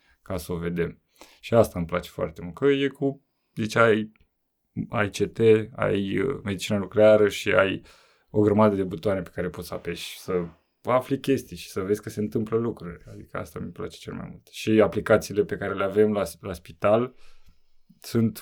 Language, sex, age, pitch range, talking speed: Romanian, male, 20-39, 100-135 Hz, 190 wpm